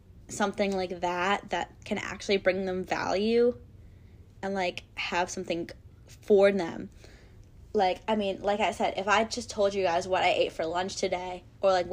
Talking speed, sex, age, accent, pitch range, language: 175 wpm, female, 10-29, American, 175-220 Hz, English